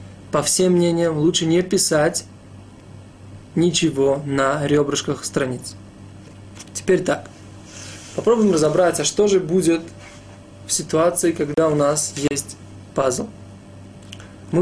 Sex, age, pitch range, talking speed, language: male, 20-39, 100-165 Hz, 105 wpm, Russian